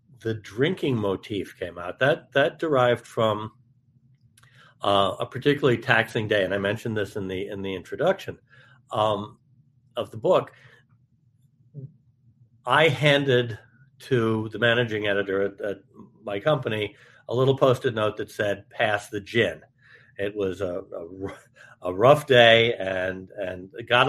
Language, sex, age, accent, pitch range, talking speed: English, male, 50-69, American, 110-130 Hz, 135 wpm